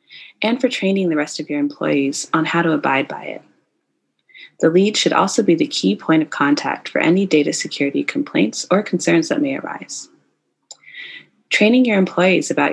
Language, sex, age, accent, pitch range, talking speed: English, female, 20-39, American, 150-245 Hz, 180 wpm